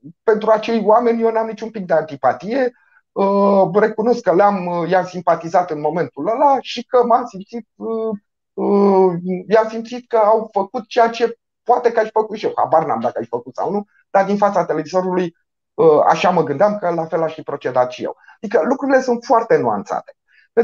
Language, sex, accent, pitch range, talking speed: Romanian, male, native, 170-230 Hz, 175 wpm